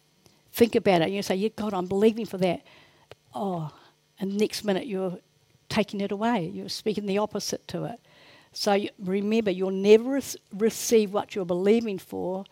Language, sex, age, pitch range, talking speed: English, female, 60-79, 205-280 Hz, 165 wpm